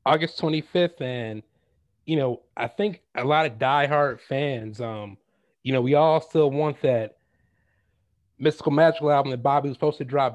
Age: 30-49